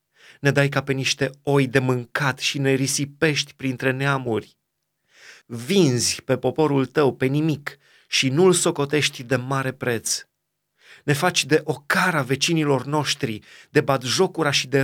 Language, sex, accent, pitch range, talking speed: Romanian, male, native, 120-145 Hz, 140 wpm